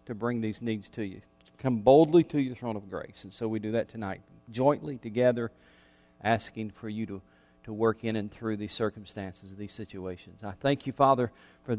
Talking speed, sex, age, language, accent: 200 wpm, male, 40-59, English, American